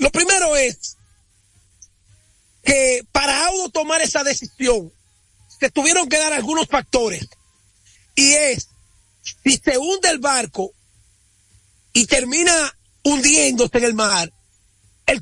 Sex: male